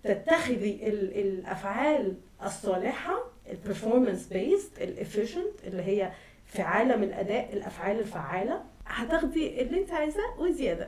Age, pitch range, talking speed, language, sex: 30-49, 205-255 Hz, 110 wpm, Arabic, female